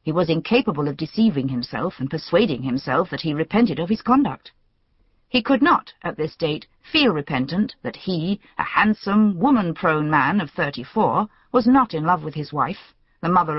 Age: 50-69